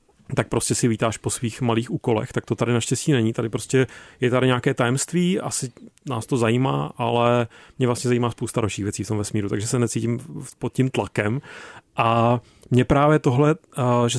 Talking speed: 180 wpm